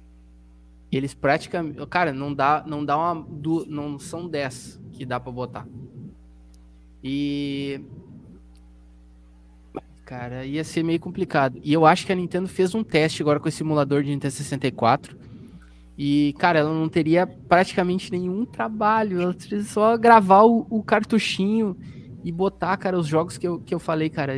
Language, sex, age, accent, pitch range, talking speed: Portuguese, male, 20-39, Brazilian, 135-175 Hz, 150 wpm